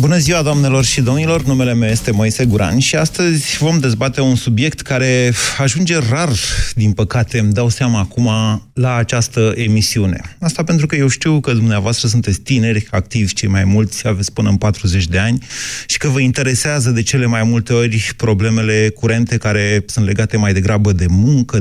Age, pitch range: 30-49, 100-135 Hz